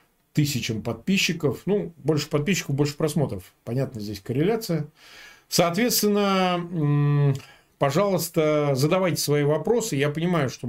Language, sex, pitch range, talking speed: Russian, male, 135-175 Hz, 100 wpm